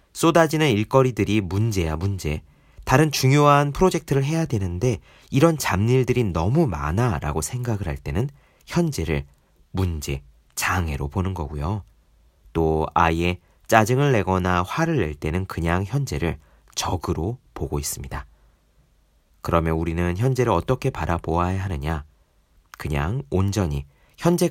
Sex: male